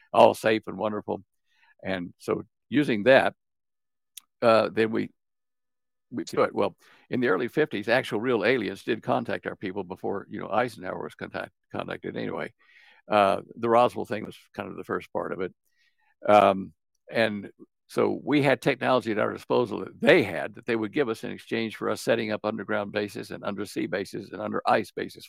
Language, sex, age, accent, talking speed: English, male, 60-79, American, 185 wpm